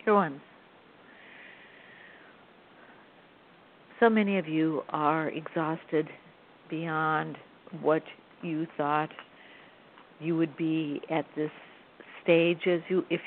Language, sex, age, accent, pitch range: English, female, 60-79, American, 160-195 Hz